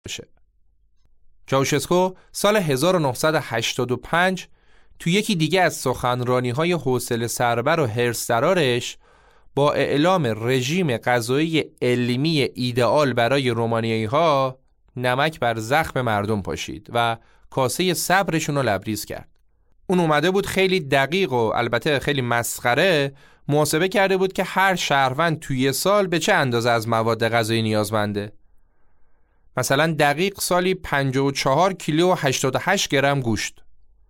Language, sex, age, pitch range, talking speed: Persian, male, 30-49, 120-170 Hz, 115 wpm